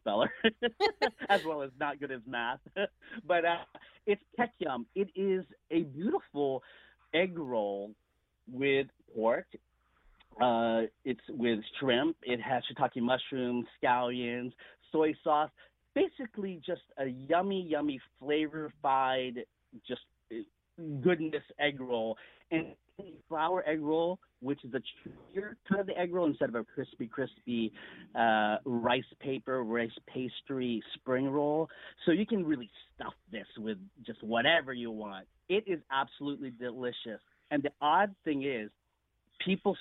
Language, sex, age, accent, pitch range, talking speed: English, male, 40-59, American, 125-190 Hz, 130 wpm